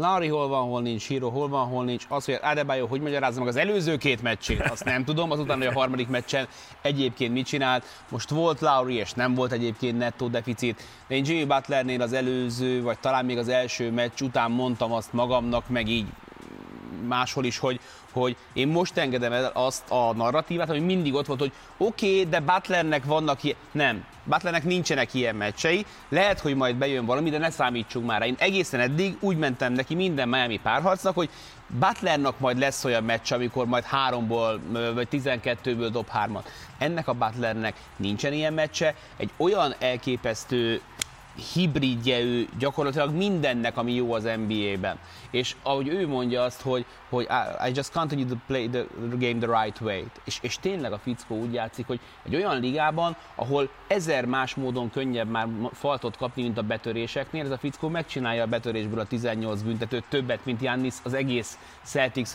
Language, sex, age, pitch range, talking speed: Hungarian, male, 30-49, 120-145 Hz, 180 wpm